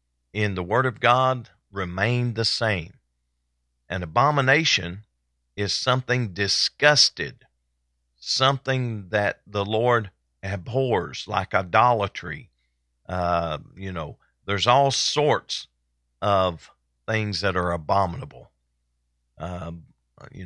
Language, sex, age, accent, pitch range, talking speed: English, male, 40-59, American, 75-110 Hz, 95 wpm